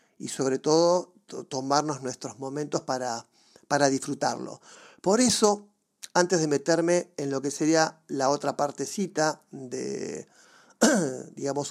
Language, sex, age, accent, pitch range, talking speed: Spanish, male, 40-59, Argentinian, 140-180 Hz, 115 wpm